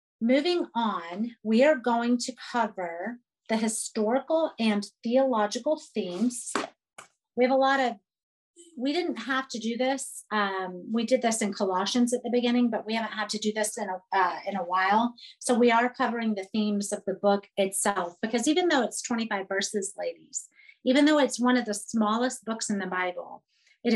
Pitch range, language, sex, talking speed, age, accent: 210-260 Hz, English, female, 180 wpm, 40-59, American